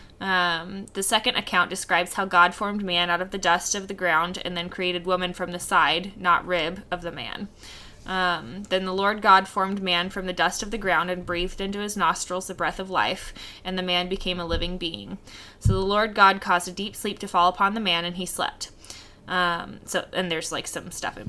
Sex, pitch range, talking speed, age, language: female, 175-195 Hz, 230 wpm, 20-39, English